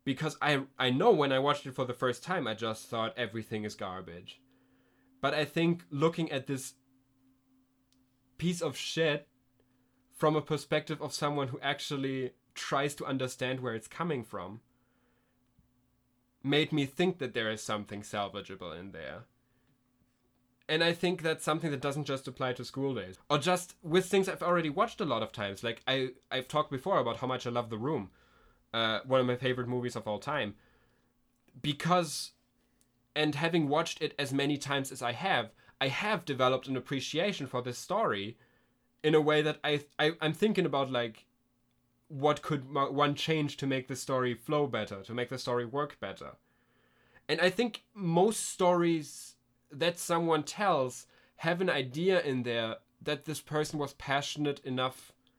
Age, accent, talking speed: 20-39, German, 170 wpm